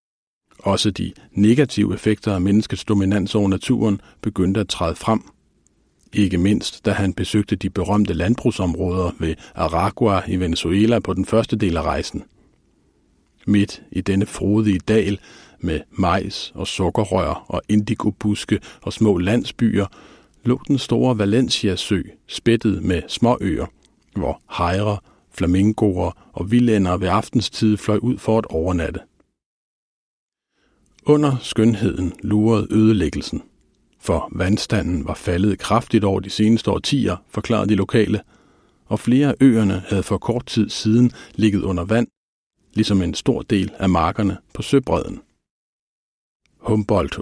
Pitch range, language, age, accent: 95-115 Hz, Danish, 50-69, native